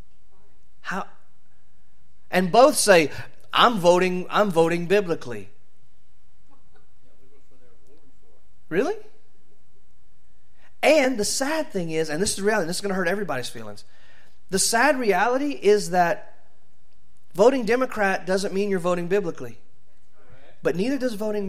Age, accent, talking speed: 30-49, American, 120 wpm